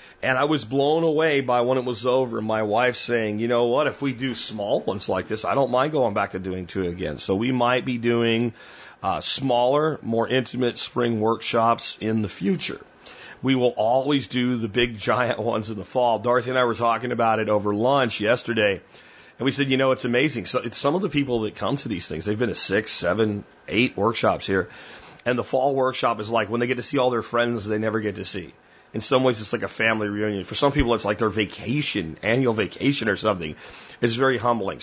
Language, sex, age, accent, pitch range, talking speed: German, male, 40-59, American, 110-130 Hz, 230 wpm